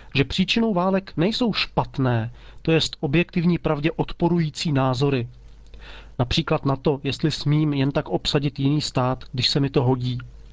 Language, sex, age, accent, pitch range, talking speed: Czech, male, 40-59, native, 140-185 Hz, 150 wpm